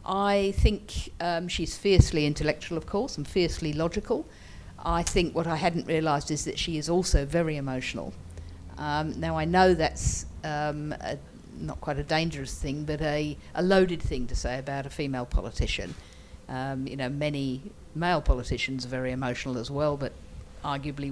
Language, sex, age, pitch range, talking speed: English, female, 50-69, 125-165 Hz, 170 wpm